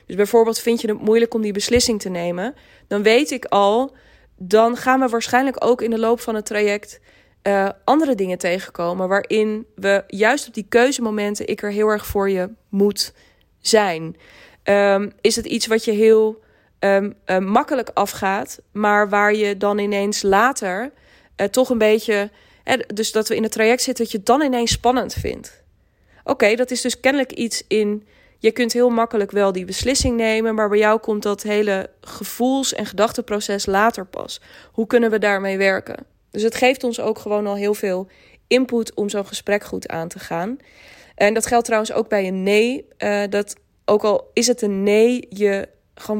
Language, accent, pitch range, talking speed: Dutch, Dutch, 205-235 Hz, 185 wpm